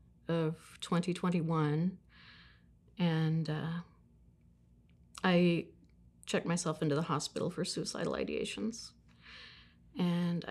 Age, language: 30-49, English